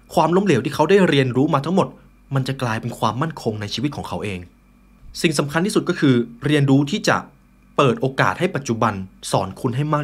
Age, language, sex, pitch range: 20-39, Thai, male, 115-165 Hz